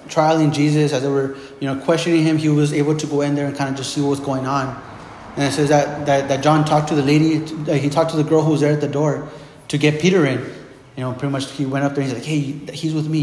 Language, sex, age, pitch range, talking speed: English, male, 30-49, 140-165 Hz, 305 wpm